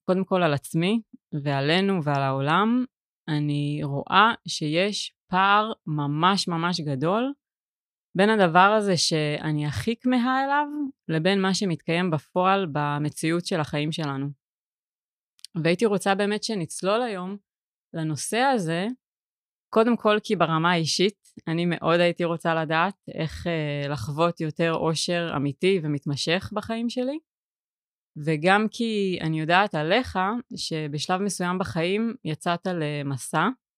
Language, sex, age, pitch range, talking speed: Hebrew, female, 30-49, 155-200 Hz, 115 wpm